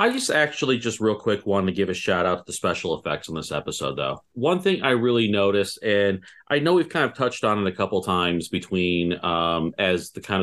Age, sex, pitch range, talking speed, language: 30-49, male, 90-115 Hz, 240 wpm, English